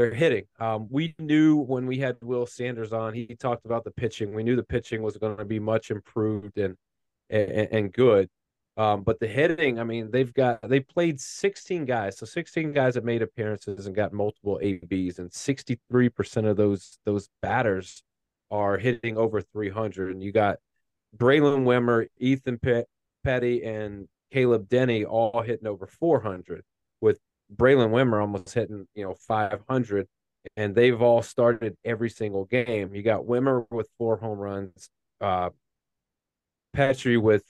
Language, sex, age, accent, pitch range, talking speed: English, male, 30-49, American, 105-125 Hz, 165 wpm